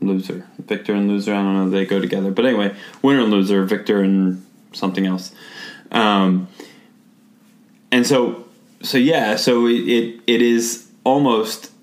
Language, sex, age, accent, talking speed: English, male, 20-39, American, 140 wpm